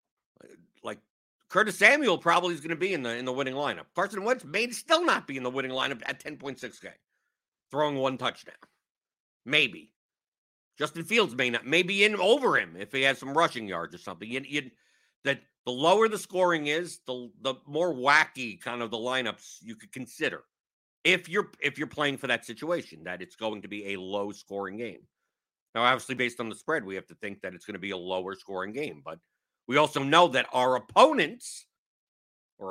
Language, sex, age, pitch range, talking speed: English, male, 50-69, 120-150 Hz, 195 wpm